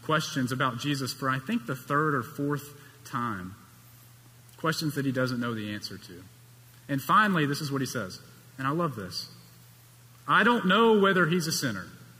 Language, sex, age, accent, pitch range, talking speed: English, male, 40-59, American, 120-165 Hz, 180 wpm